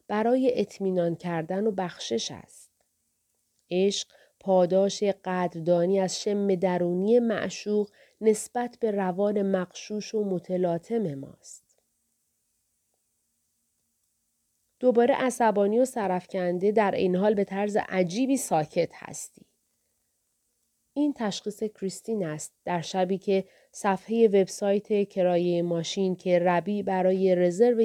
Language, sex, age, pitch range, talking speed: Persian, female, 30-49, 175-215 Hz, 100 wpm